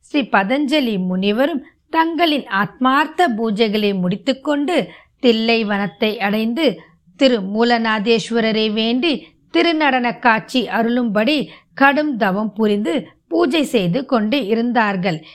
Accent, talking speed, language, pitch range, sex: native, 90 wpm, Tamil, 210-285 Hz, female